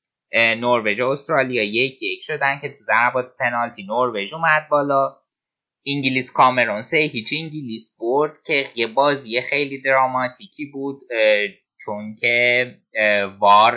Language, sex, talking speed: Persian, male, 115 wpm